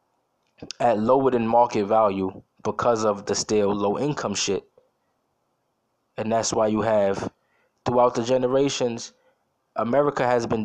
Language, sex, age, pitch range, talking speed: English, male, 20-39, 110-130 Hz, 125 wpm